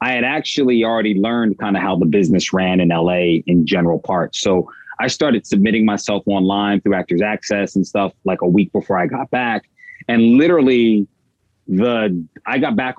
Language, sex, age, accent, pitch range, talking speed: English, male, 30-49, American, 100-120 Hz, 185 wpm